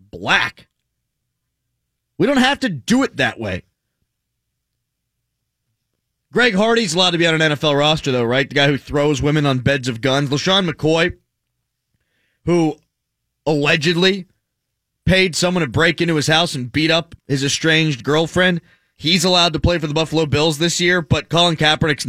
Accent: American